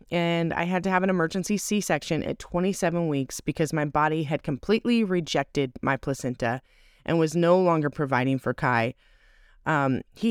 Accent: American